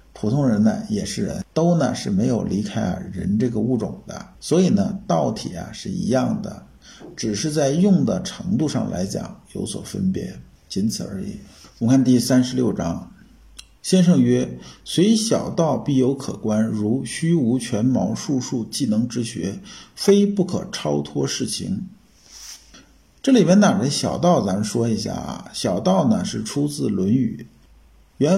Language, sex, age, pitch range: Chinese, male, 50-69, 125-195 Hz